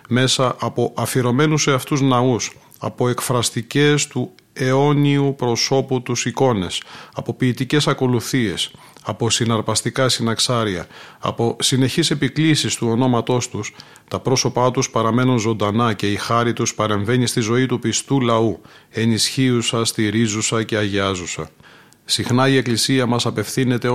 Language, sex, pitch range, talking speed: Greek, male, 115-130 Hz, 125 wpm